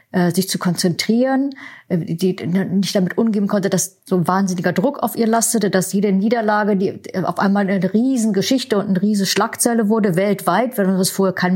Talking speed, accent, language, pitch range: 185 wpm, German, German, 180-210 Hz